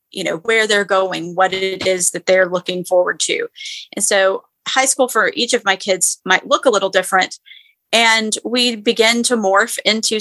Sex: female